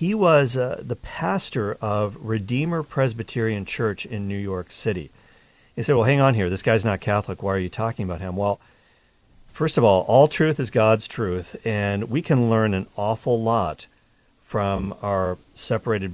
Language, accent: English, American